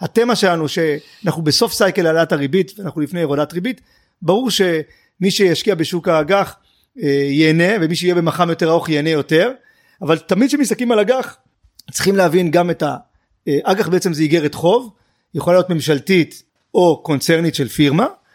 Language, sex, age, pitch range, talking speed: Hebrew, male, 40-59, 160-205 Hz, 145 wpm